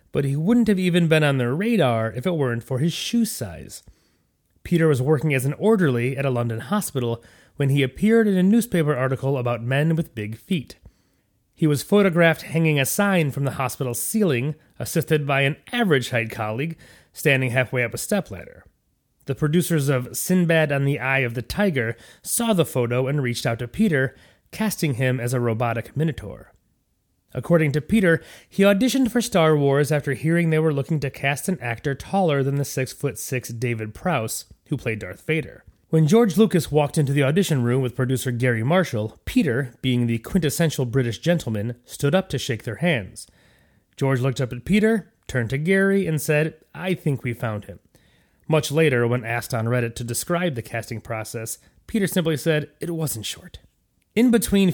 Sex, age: male, 30-49